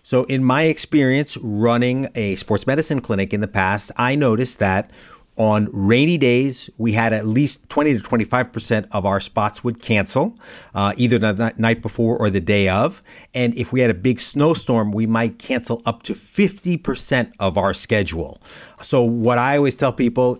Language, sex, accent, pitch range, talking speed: English, male, American, 105-125 Hz, 180 wpm